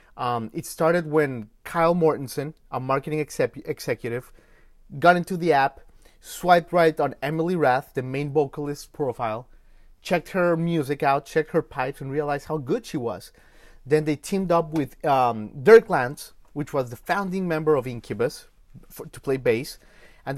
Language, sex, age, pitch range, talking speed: English, male, 30-49, 130-160 Hz, 165 wpm